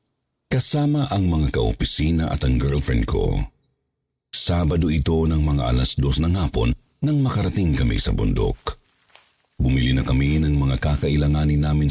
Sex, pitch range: male, 70-100 Hz